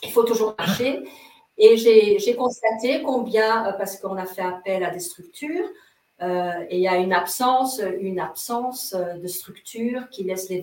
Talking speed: 175 wpm